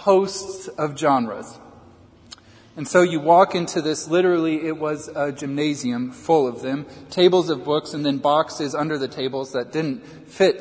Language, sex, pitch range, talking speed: English, male, 130-155 Hz, 165 wpm